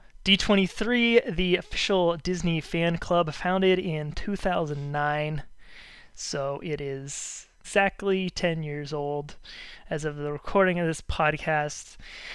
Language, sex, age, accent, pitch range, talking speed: English, male, 20-39, American, 150-175 Hz, 110 wpm